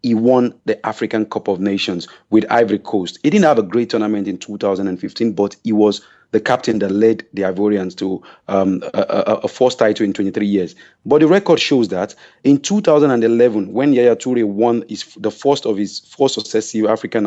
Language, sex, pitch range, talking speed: English, male, 110-130 Hz, 195 wpm